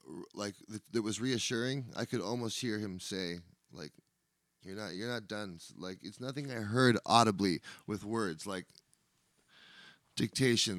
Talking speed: 145 wpm